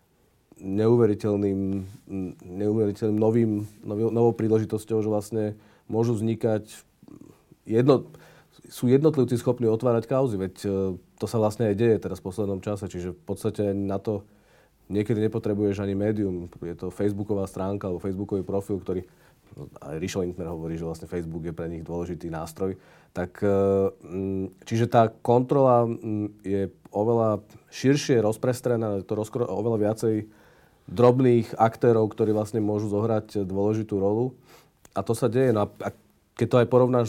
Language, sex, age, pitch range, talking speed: Slovak, male, 40-59, 100-120 Hz, 135 wpm